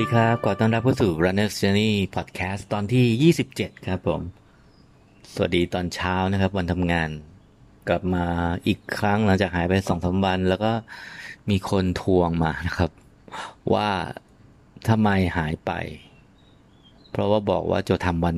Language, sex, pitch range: English, male, 90-105 Hz